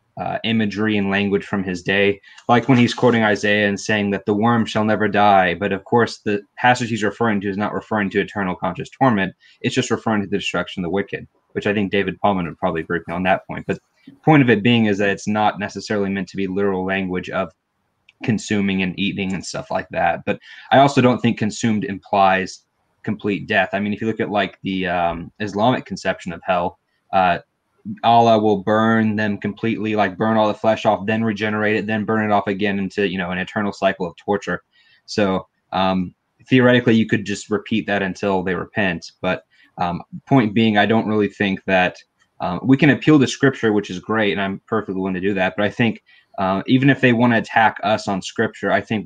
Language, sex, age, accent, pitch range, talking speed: English, male, 20-39, American, 95-110 Hz, 220 wpm